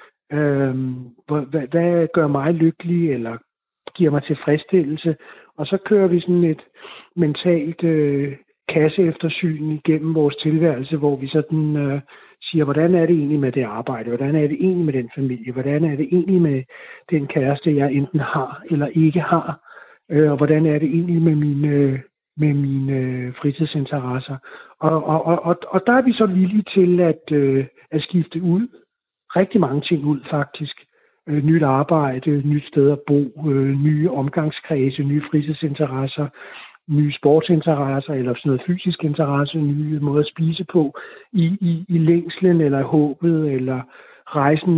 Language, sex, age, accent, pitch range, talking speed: Danish, male, 60-79, native, 145-170 Hz, 150 wpm